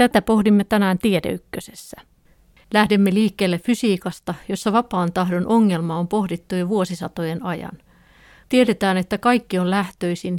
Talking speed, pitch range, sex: 120 wpm, 180-210 Hz, female